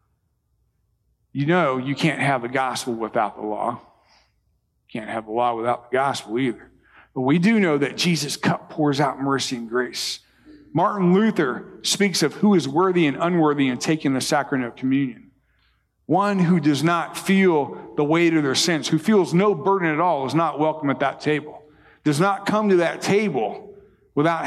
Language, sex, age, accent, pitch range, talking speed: English, male, 50-69, American, 130-170 Hz, 185 wpm